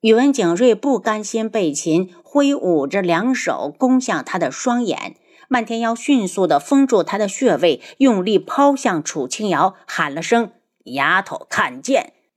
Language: Chinese